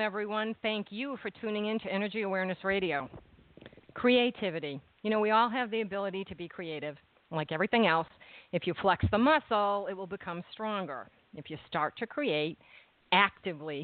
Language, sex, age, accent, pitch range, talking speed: English, female, 50-69, American, 160-200 Hz, 170 wpm